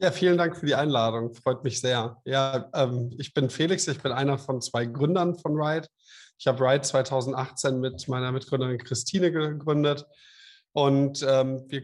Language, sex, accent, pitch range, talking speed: German, male, German, 125-145 Hz, 160 wpm